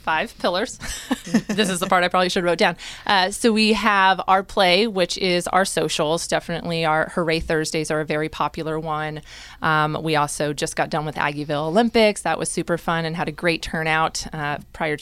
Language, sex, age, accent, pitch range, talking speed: English, female, 20-39, American, 155-185 Hz, 200 wpm